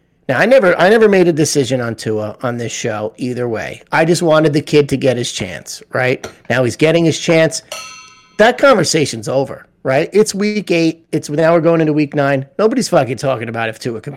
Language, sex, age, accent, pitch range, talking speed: English, male, 30-49, American, 125-160 Hz, 215 wpm